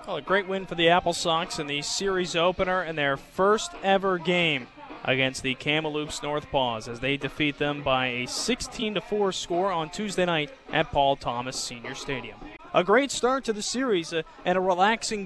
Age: 20-39